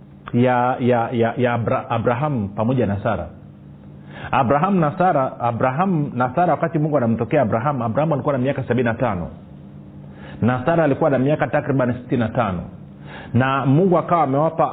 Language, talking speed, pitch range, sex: Swahili, 145 wpm, 110-145 Hz, male